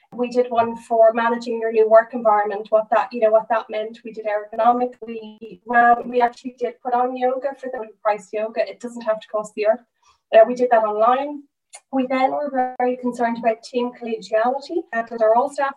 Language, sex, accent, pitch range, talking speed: English, female, Irish, 225-255 Hz, 205 wpm